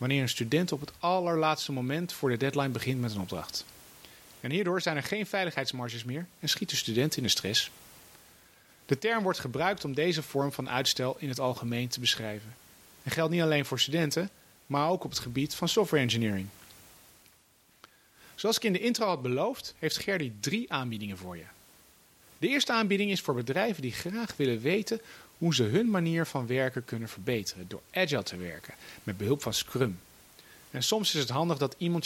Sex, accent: male, Dutch